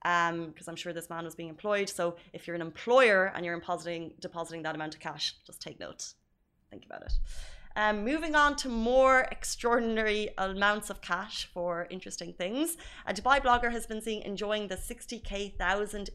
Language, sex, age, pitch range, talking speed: Arabic, female, 20-39, 175-205 Hz, 185 wpm